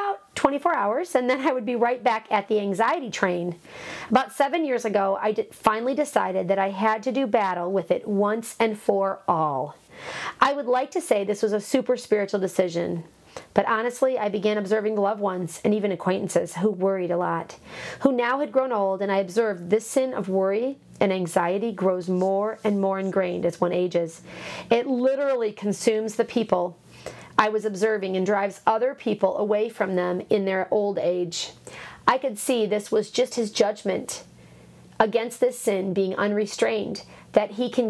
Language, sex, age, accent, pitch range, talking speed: English, female, 40-59, American, 190-235 Hz, 180 wpm